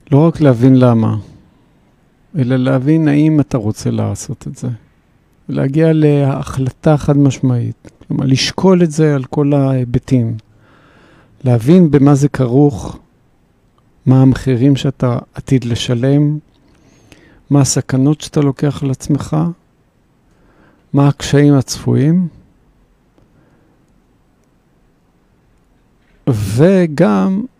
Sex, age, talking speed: male, 50-69, 90 wpm